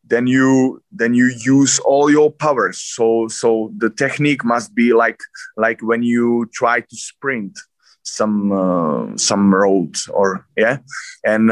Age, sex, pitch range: 20-39, male, 110-130 Hz